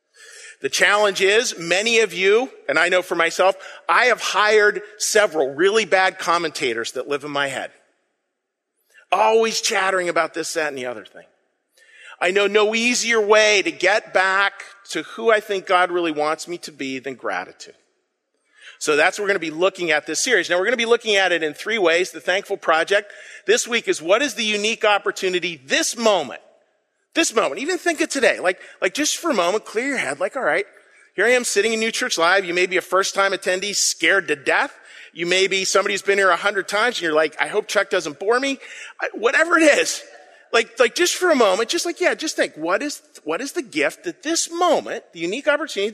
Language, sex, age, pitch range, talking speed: English, male, 40-59, 175-250 Hz, 220 wpm